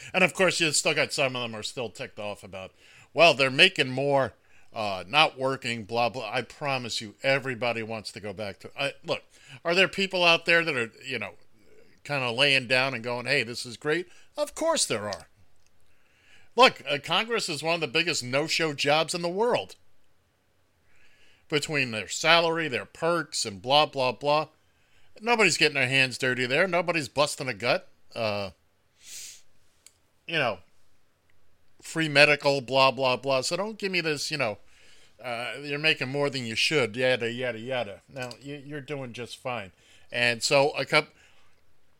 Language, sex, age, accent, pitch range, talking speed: English, male, 50-69, American, 115-155 Hz, 175 wpm